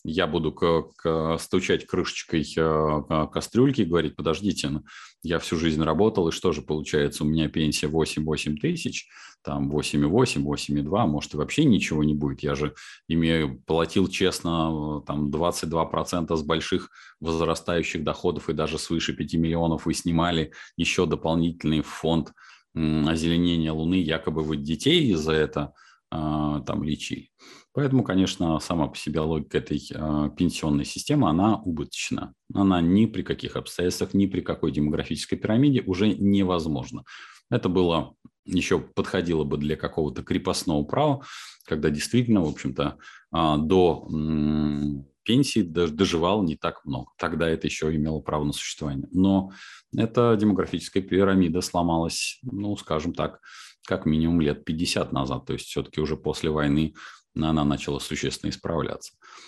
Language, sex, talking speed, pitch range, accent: Russian, male, 130 wpm, 75-90 Hz, native